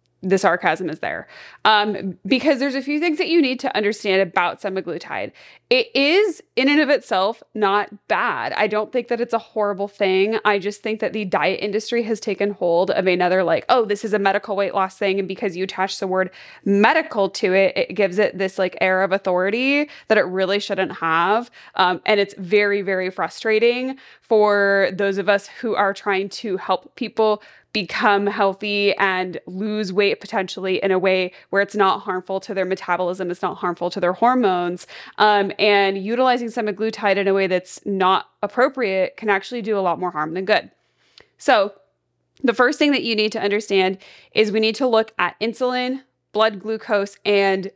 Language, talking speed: English, 190 wpm